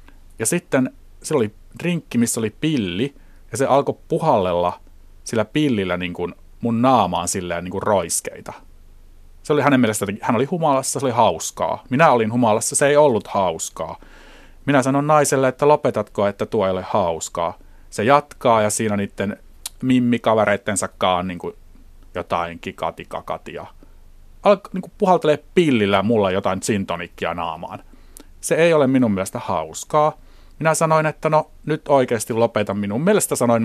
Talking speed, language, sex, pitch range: 145 wpm, Finnish, male, 90-135 Hz